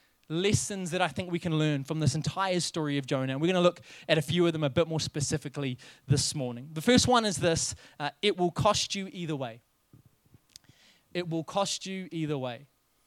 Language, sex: English, male